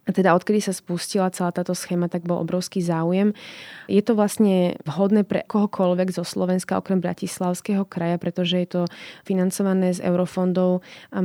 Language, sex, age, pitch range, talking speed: Slovak, female, 20-39, 170-185 Hz, 160 wpm